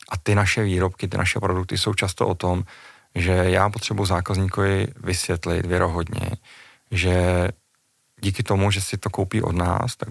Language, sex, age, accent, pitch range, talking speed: Czech, male, 30-49, native, 90-105 Hz, 160 wpm